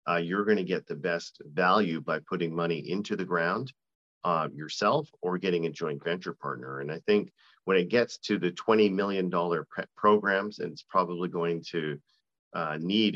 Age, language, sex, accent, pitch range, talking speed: 40-59, English, male, American, 75-95 Hz, 180 wpm